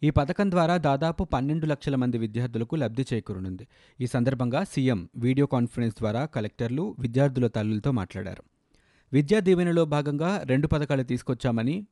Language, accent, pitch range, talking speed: Telugu, native, 115-150 Hz, 130 wpm